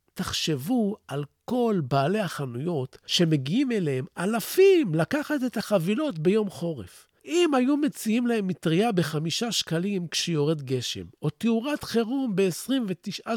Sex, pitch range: male, 155-230 Hz